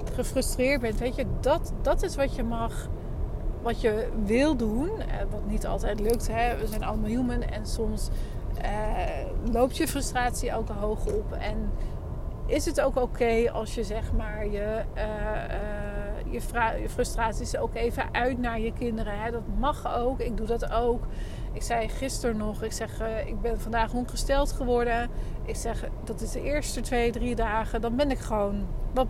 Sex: female